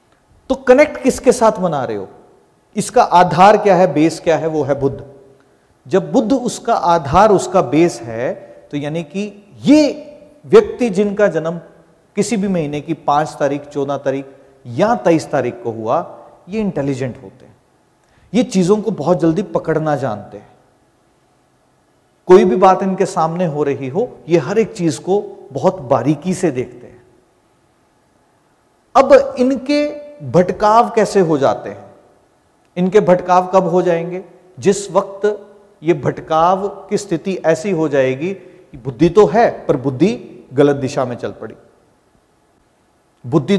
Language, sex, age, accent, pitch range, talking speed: Hindi, male, 40-59, native, 150-210 Hz, 145 wpm